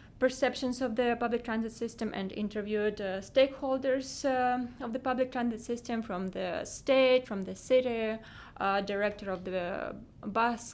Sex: female